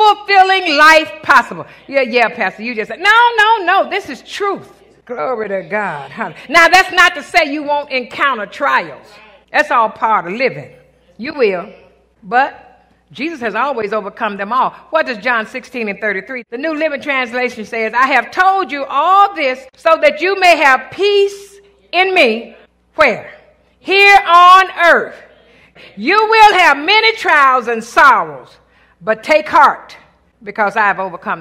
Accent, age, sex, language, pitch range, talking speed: American, 50-69, female, English, 245-365 Hz, 160 wpm